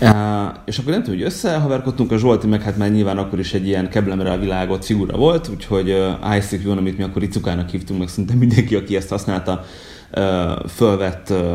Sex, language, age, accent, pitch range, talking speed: male, English, 30-49, Finnish, 90-105 Hz, 195 wpm